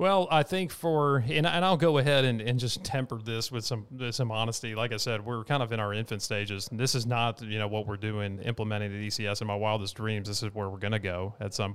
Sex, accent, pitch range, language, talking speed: male, American, 100-115 Hz, English, 275 wpm